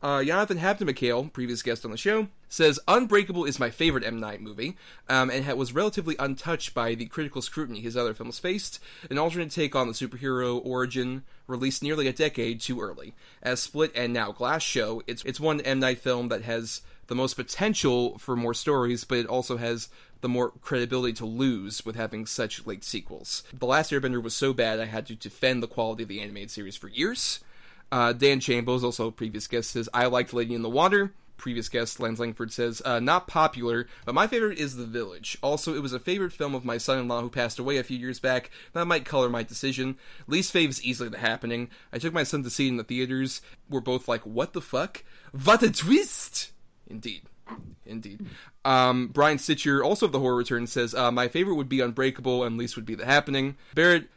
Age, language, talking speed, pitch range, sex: 30-49, English, 215 wpm, 120-145 Hz, male